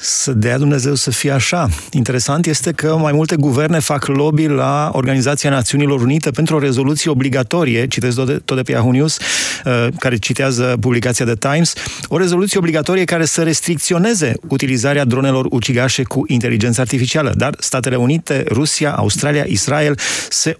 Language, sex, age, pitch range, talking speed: Romanian, male, 30-49, 125-155 Hz, 155 wpm